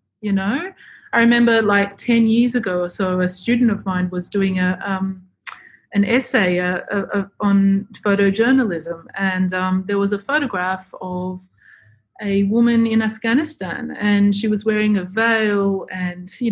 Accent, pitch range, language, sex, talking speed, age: Australian, 195-235 Hz, English, female, 160 wpm, 30-49